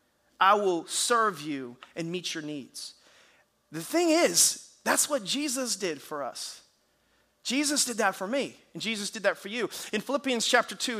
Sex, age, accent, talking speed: male, 30-49, American, 175 wpm